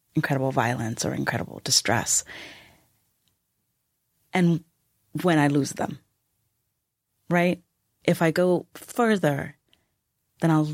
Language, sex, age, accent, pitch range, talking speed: English, female, 30-49, American, 135-165 Hz, 95 wpm